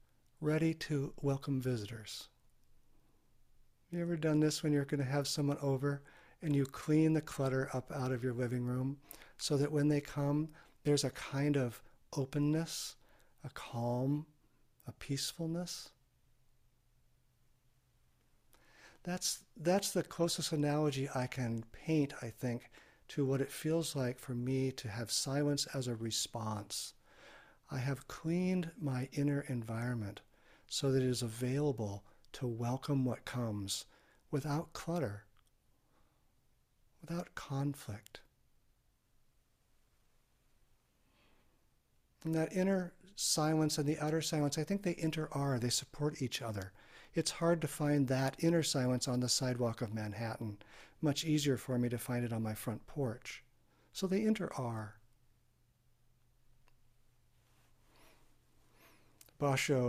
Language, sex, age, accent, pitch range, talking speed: English, male, 50-69, American, 120-150 Hz, 125 wpm